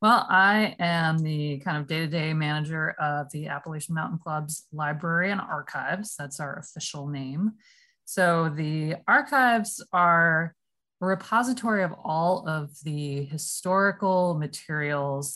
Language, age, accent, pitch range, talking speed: English, 20-39, American, 150-195 Hz, 125 wpm